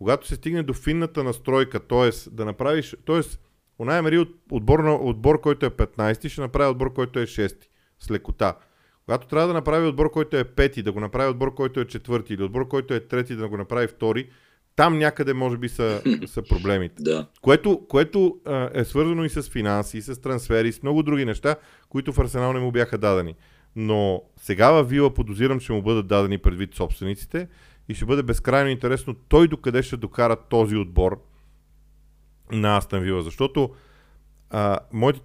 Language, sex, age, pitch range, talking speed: Bulgarian, male, 40-59, 105-140 Hz, 180 wpm